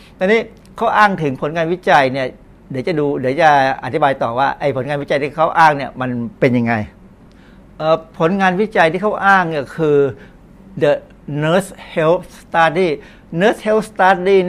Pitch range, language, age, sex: 140-180 Hz, Thai, 60-79, male